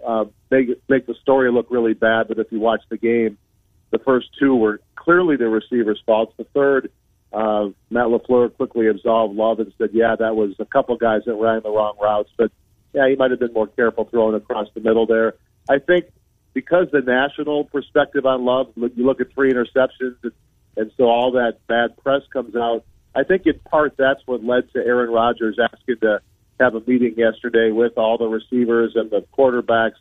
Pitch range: 110-130 Hz